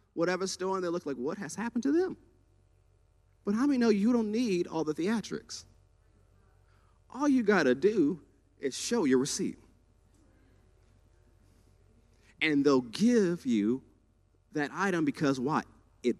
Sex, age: male, 40-59